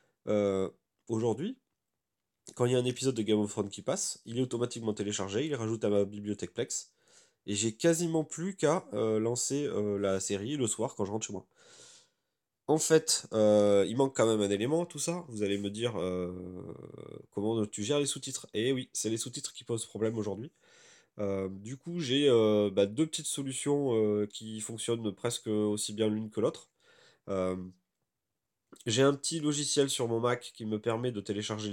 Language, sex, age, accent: French, male, 20-39, French